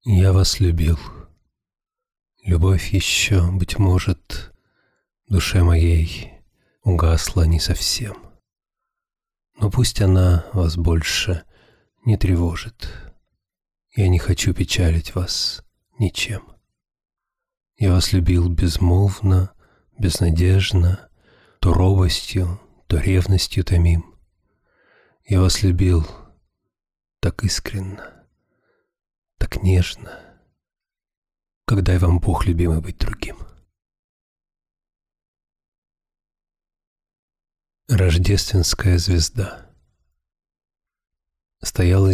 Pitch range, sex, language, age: 85-95 Hz, male, Russian, 40-59